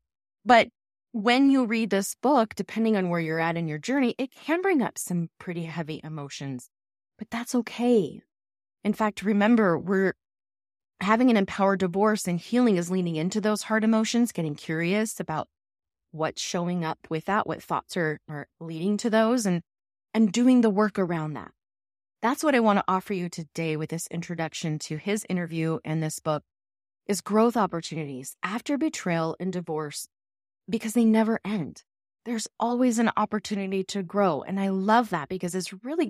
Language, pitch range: English, 160-215 Hz